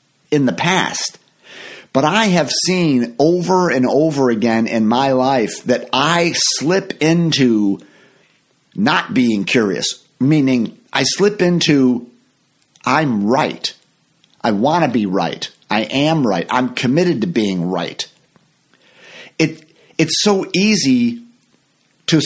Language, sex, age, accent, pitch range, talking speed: English, male, 50-69, American, 120-160 Hz, 120 wpm